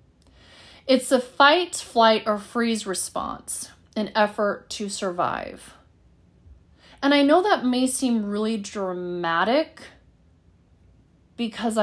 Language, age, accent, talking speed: English, 30-49, American, 100 wpm